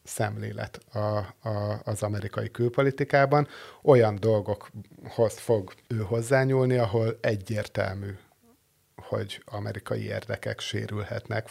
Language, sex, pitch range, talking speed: Hungarian, male, 105-115 Hz, 90 wpm